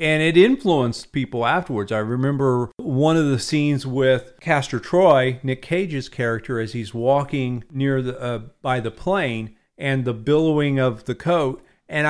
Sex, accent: male, American